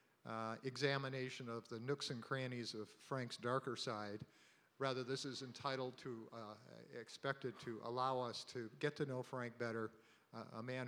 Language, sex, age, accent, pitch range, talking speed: English, male, 50-69, American, 115-135 Hz, 165 wpm